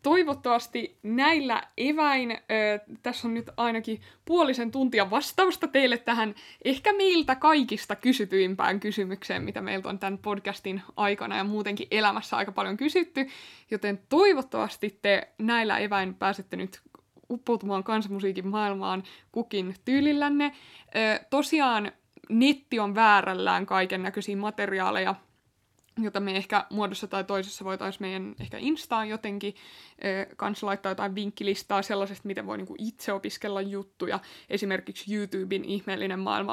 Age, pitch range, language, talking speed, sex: 20-39, 195-235 Hz, Finnish, 125 wpm, female